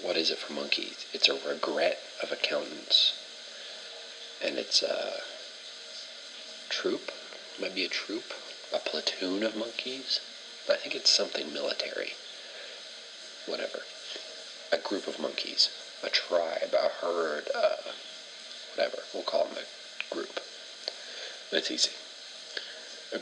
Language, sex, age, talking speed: English, male, 40-59, 125 wpm